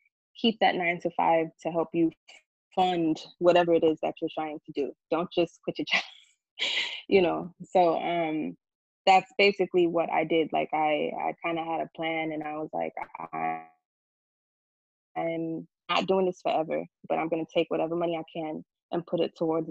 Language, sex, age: English, female, 20-39